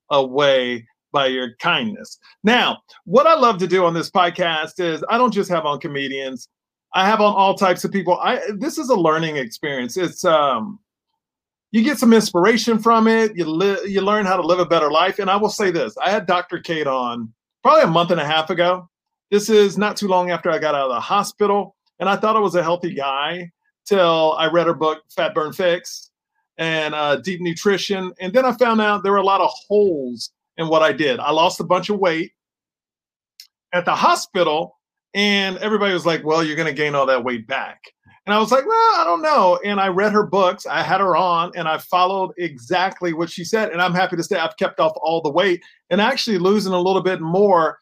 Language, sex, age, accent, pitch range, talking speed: English, male, 40-59, American, 165-210 Hz, 225 wpm